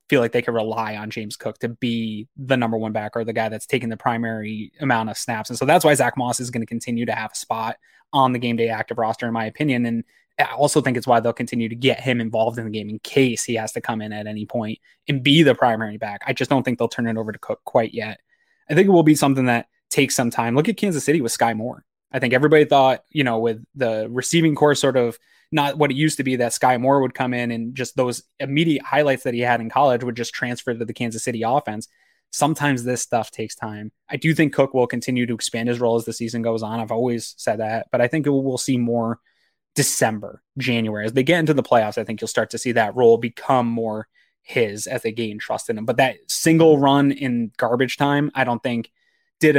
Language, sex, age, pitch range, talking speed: English, male, 20-39, 115-135 Hz, 260 wpm